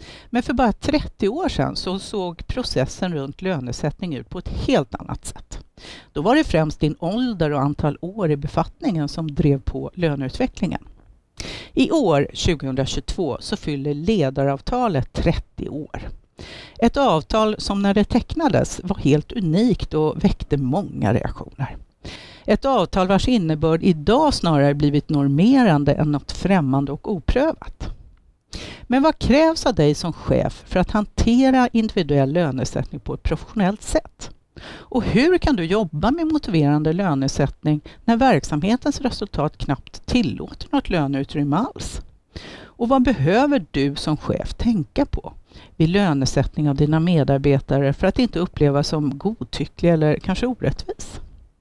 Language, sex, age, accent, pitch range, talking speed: Swedish, female, 50-69, native, 145-225 Hz, 140 wpm